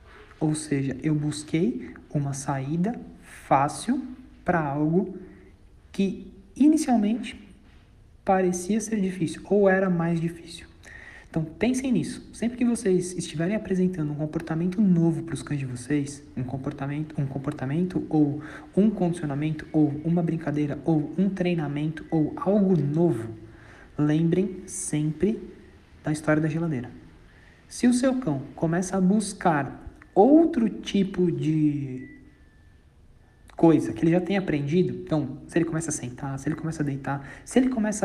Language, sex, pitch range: Portuguese, male, 145-185 Hz